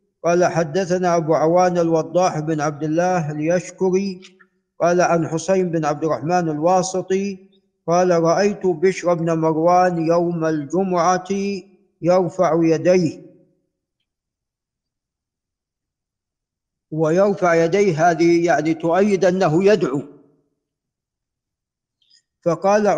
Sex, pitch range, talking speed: male, 165-195 Hz, 85 wpm